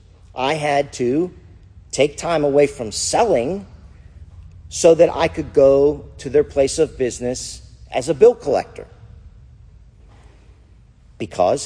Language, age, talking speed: English, 50-69, 120 wpm